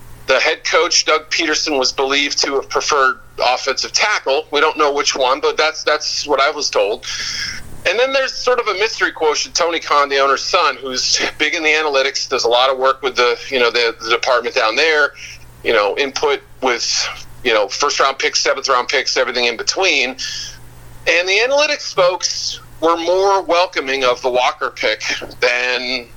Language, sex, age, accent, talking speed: English, male, 40-59, American, 190 wpm